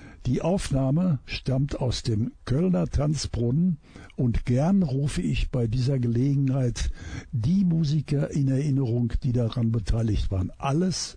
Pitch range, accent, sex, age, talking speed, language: 110-140 Hz, German, male, 60-79, 125 wpm, German